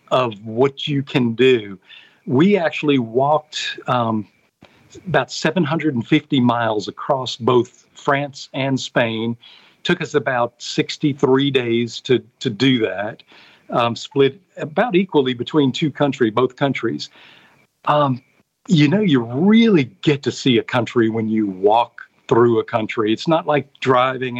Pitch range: 120-155 Hz